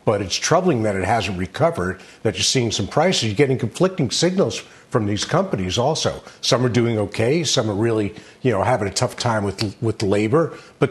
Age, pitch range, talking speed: 50-69, 115-160 Hz, 205 wpm